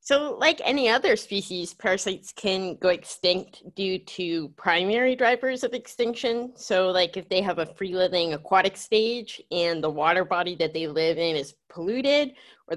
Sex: female